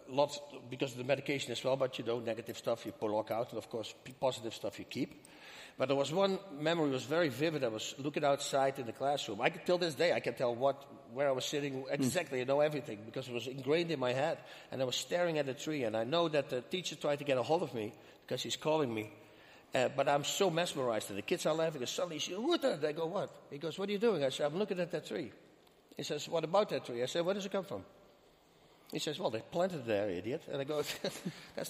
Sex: male